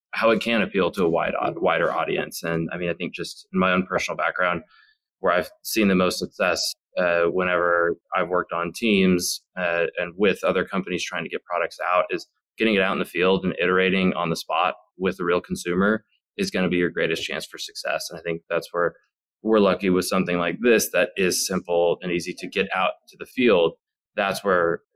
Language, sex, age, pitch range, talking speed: English, male, 20-39, 90-110 Hz, 220 wpm